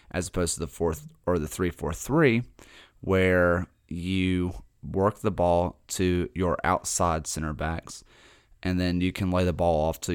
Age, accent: 30-49, American